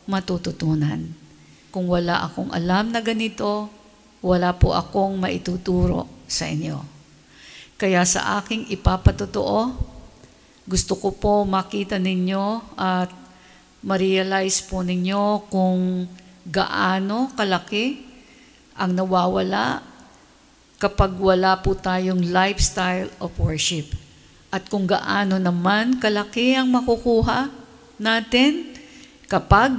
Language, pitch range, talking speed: English, 175-205 Hz, 95 wpm